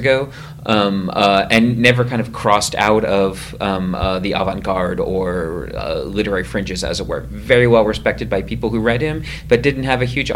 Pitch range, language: 100-125 Hz, English